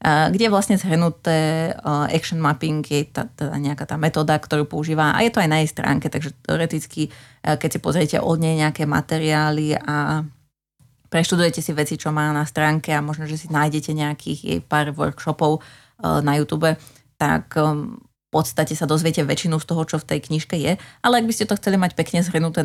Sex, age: female, 20-39